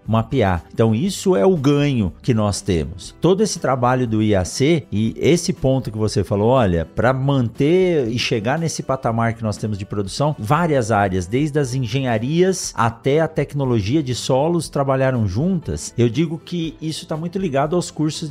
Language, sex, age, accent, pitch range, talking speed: Portuguese, male, 50-69, Brazilian, 115-165 Hz, 175 wpm